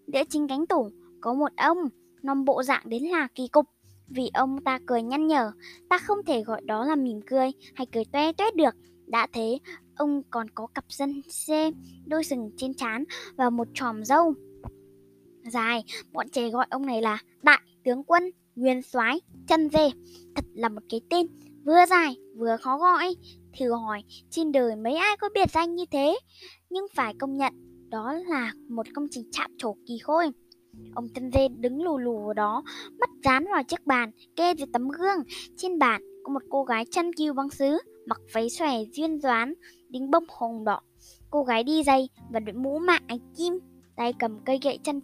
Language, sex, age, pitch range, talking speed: Vietnamese, male, 10-29, 230-315 Hz, 195 wpm